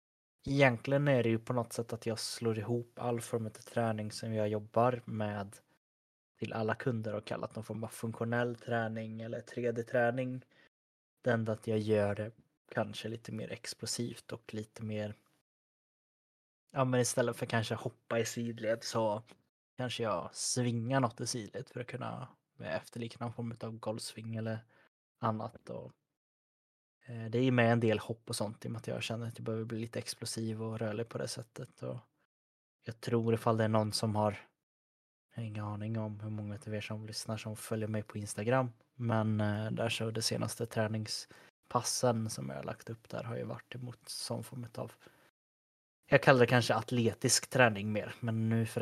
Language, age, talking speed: Swedish, 20-39, 185 wpm